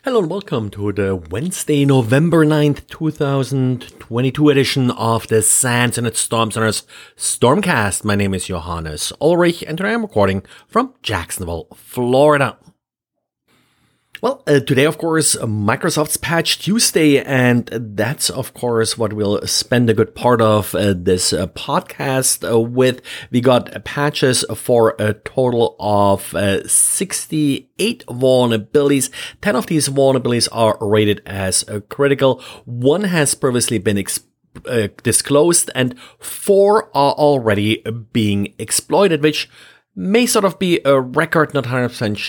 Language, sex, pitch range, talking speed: English, male, 115-150 Hz, 135 wpm